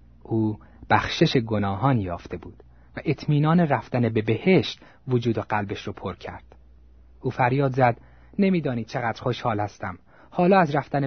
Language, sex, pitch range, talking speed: Persian, male, 85-135 Hz, 140 wpm